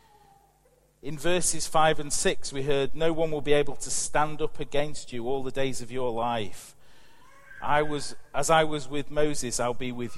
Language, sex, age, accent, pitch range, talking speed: English, male, 40-59, British, 125-155 Hz, 195 wpm